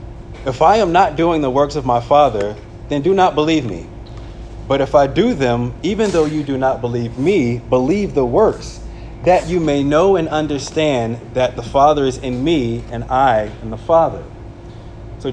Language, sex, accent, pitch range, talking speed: English, male, American, 115-140 Hz, 190 wpm